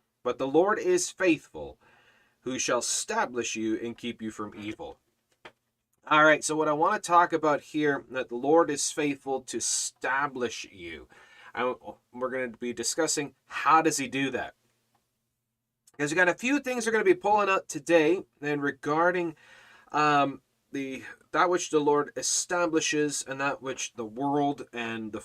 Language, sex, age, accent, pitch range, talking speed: English, male, 30-49, American, 120-165 Hz, 170 wpm